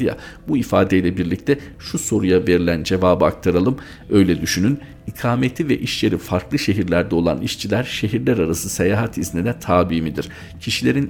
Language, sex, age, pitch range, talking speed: Turkish, male, 50-69, 85-105 Hz, 140 wpm